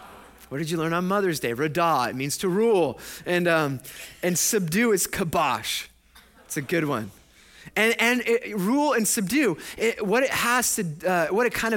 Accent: American